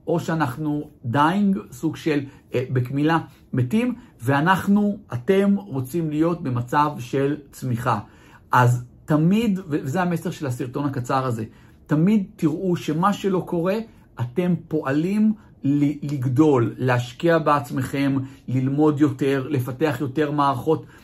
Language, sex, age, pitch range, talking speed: Hebrew, male, 50-69, 135-175 Hz, 105 wpm